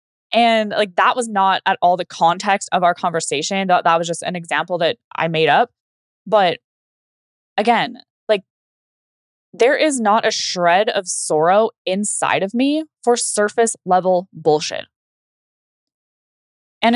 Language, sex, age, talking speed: English, female, 10-29, 140 wpm